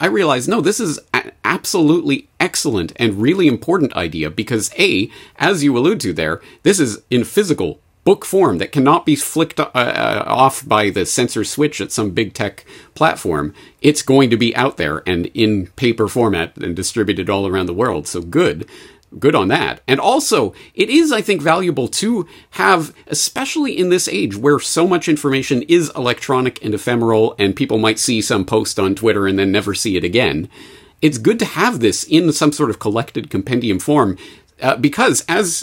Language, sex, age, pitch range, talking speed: English, male, 40-59, 105-145 Hz, 185 wpm